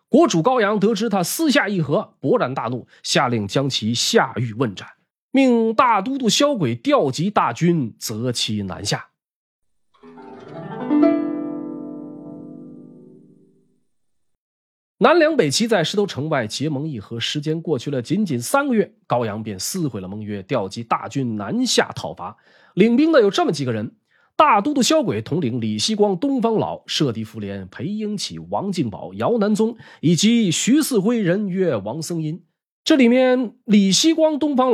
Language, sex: Chinese, male